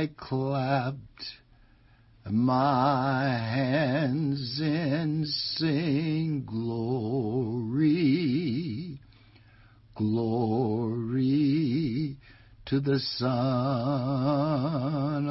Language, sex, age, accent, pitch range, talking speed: English, male, 60-79, American, 115-145 Hz, 45 wpm